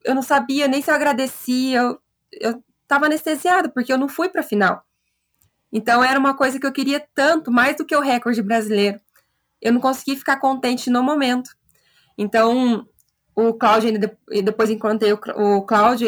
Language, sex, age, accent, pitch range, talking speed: Portuguese, female, 20-39, Brazilian, 215-265 Hz, 165 wpm